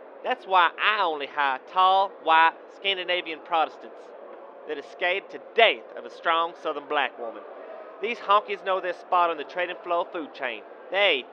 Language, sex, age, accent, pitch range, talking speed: English, male, 30-49, American, 160-195 Hz, 170 wpm